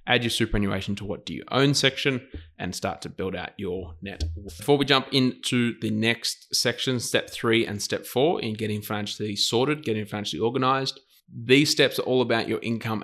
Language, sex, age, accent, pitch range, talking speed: English, male, 20-39, Australian, 105-125 Hz, 195 wpm